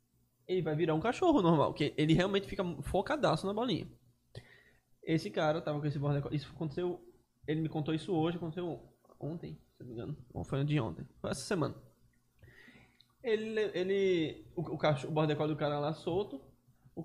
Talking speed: 175 wpm